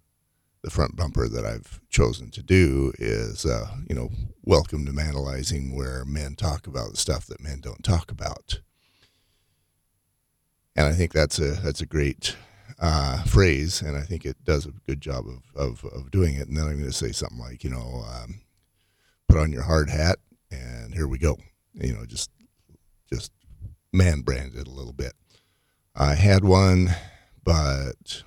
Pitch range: 70-95 Hz